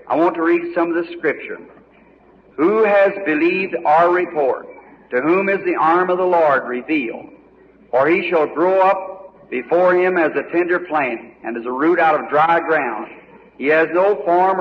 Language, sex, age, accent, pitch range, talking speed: English, male, 50-69, American, 165-205 Hz, 185 wpm